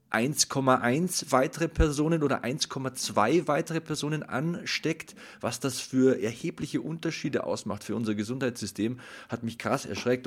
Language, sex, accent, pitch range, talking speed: German, male, German, 115-155 Hz, 115 wpm